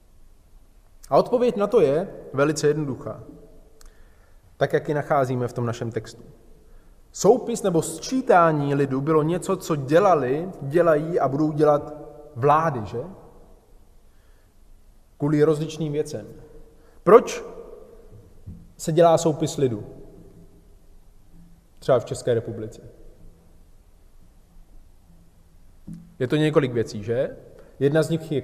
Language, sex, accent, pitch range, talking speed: Czech, male, native, 115-165 Hz, 105 wpm